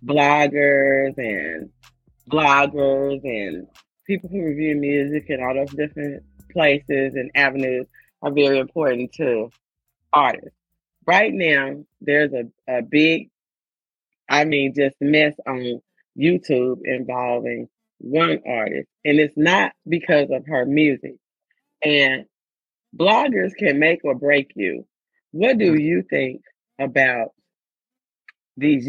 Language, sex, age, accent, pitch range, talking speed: English, female, 30-49, American, 130-150 Hz, 115 wpm